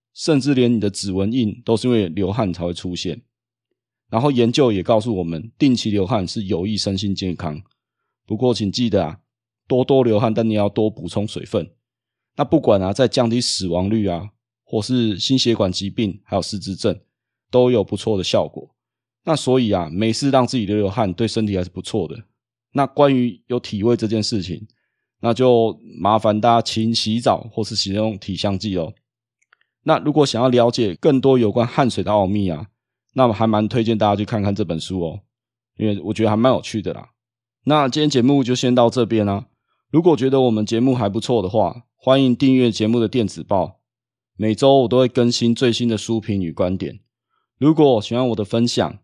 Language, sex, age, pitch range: Chinese, male, 20-39, 105-120 Hz